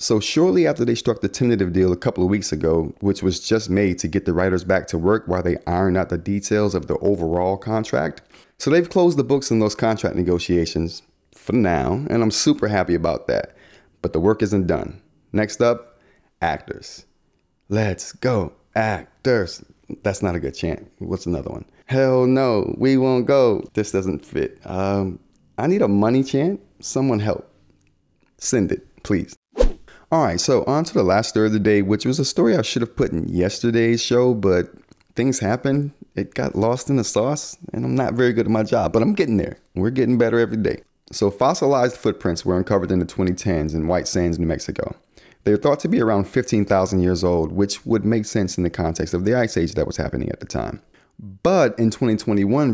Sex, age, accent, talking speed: male, 30-49, American, 205 wpm